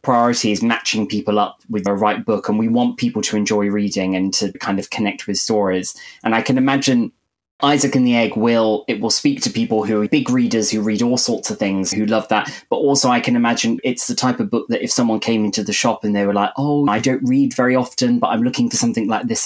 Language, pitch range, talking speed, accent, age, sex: English, 105-130 Hz, 260 wpm, British, 20-39, male